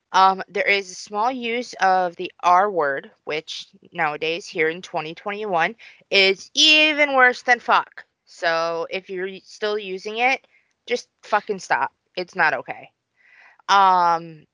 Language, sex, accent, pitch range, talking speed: English, female, American, 170-225 Hz, 135 wpm